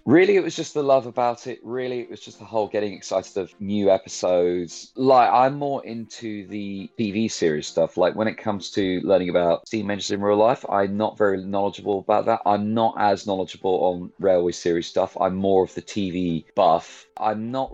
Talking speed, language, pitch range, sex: 205 wpm, English, 100-120 Hz, male